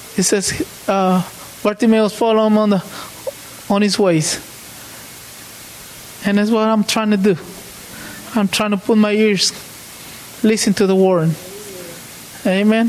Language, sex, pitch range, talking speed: English, male, 185-215 Hz, 135 wpm